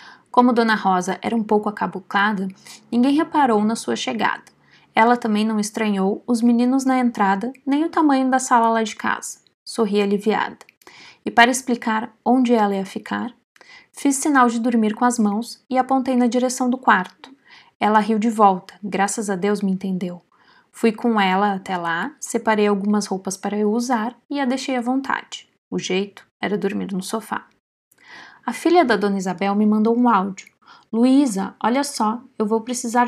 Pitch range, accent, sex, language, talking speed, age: 205-255 Hz, Brazilian, female, Portuguese, 175 wpm, 20-39